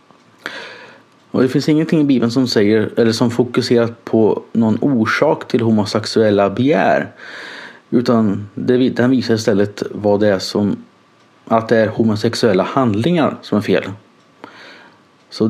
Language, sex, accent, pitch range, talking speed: English, male, Swedish, 110-145 Hz, 130 wpm